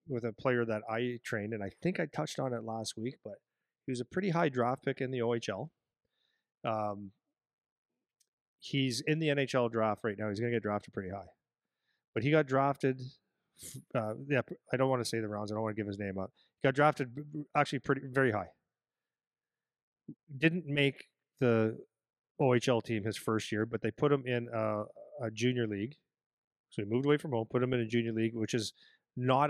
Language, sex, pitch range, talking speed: English, male, 110-135 Hz, 205 wpm